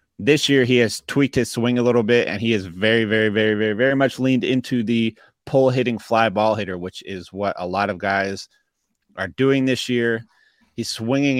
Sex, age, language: male, 20-39, English